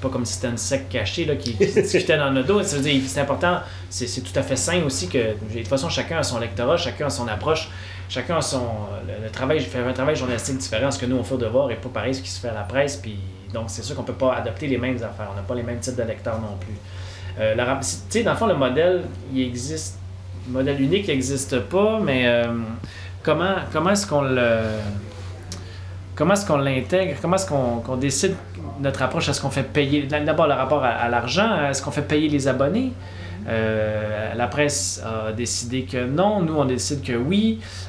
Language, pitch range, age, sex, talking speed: French, 105-140 Hz, 30-49, male, 235 wpm